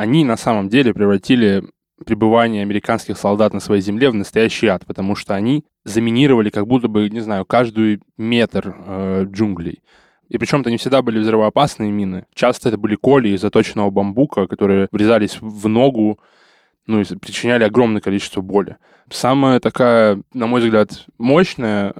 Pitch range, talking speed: 100-115 Hz, 155 wpm